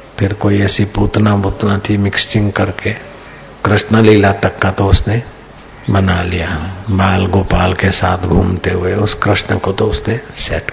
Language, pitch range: Hindi, 95-110 Hz